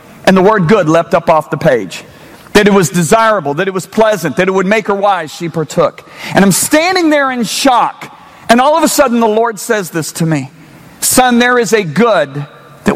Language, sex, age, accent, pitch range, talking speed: English, male, 40-59, American, 200-290 Hz, 220 wpm